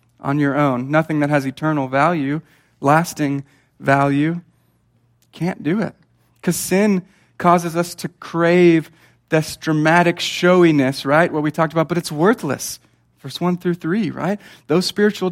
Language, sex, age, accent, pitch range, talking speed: English, male, 40-59, American, 135-170 Hz, 145 wpm